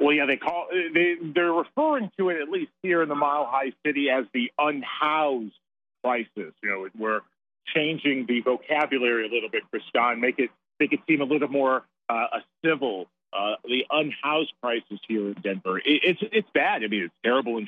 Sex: male